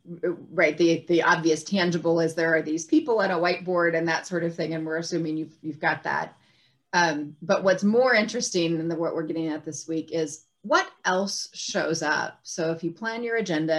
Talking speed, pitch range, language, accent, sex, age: 215 wpm, 160-190 Hz, English, American, female, 30-49